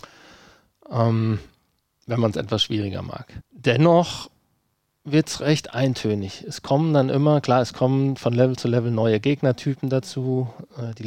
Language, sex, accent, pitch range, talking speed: German, male, German, 115-140 Hz, 150 wpm